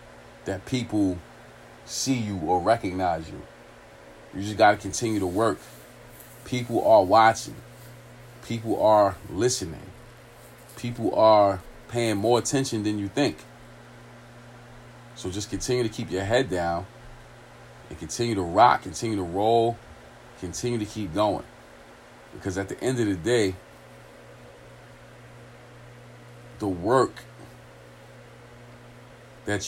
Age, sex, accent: 40-59, male, American